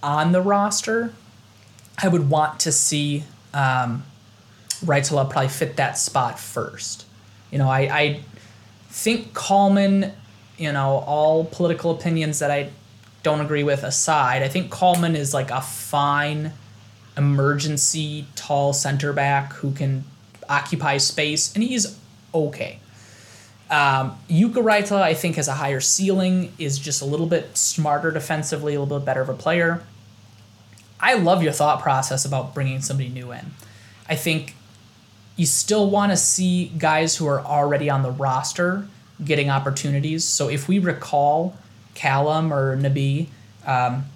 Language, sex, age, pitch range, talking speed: English, male, 20-39, 125-165 Hz, 145 wpm